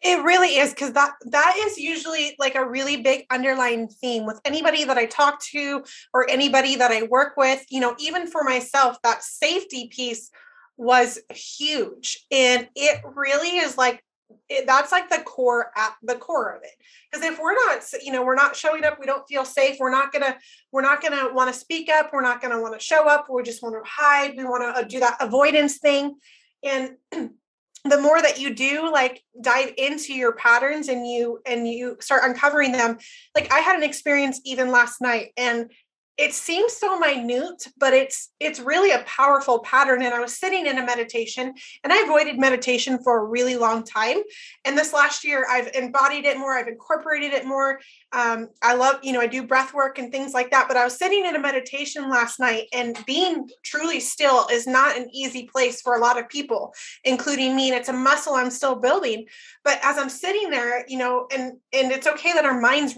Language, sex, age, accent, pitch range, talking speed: English, female, 30-49, American, 250-295 Hz, 210 wpm